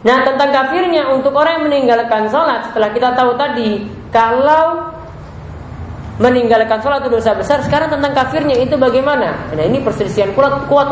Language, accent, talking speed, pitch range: English, Indonesian, 155 wpm, 180-265 Hz